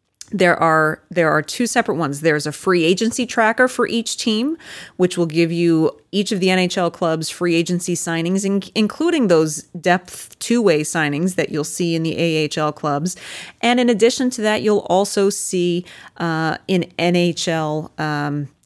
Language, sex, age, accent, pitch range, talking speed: English, female, 30-49, American, 150-195 Hz, 165 wpm